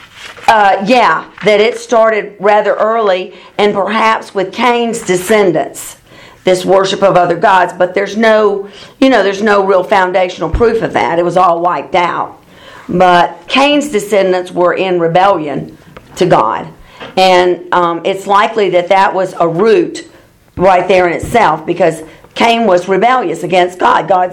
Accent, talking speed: American, 150 wpm